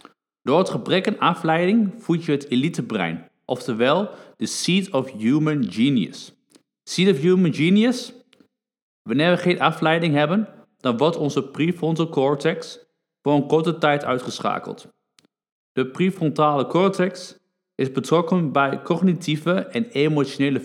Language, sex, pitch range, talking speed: Dutch, male, 140-180 Hz, 130 wpm